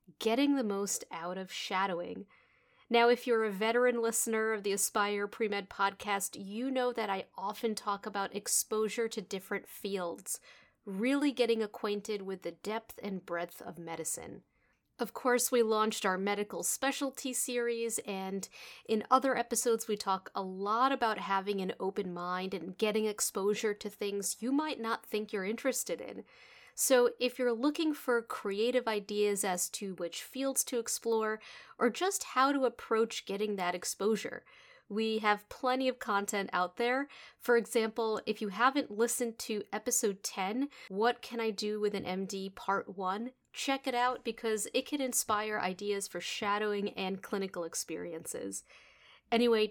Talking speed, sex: 160 wpm, female